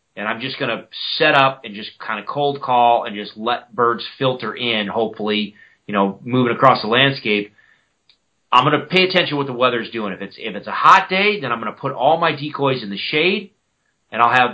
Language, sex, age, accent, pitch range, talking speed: English, male, 30-49, American, 110-140 Hz, 235 wpm